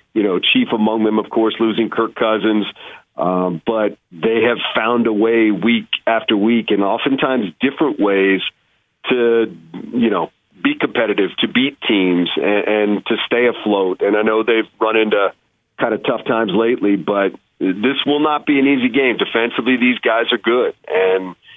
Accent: American